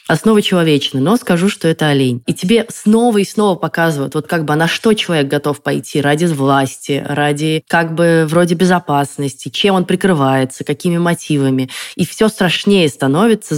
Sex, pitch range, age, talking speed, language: female, 140-180 Hz, 20-39, 165 wpm, Russian